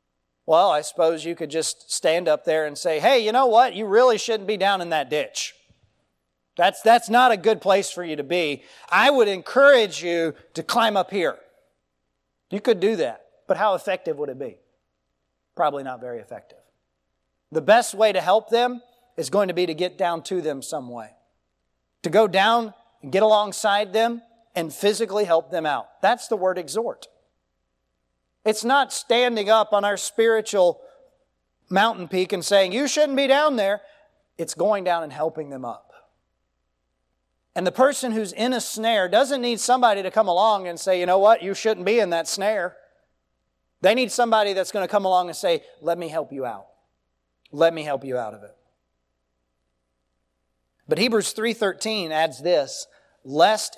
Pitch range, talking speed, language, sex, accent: 135-220 Hz, 180 wpm, English, male, American